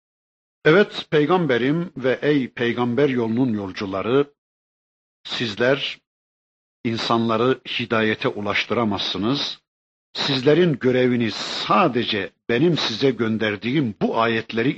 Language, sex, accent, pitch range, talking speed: Turkish, male, native, 110-145 Hz, 75 wpm